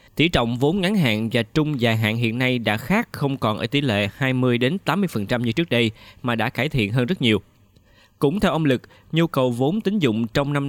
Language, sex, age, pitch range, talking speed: Vietnamese, male, 20-39, 110-145 Hz, 225 wpm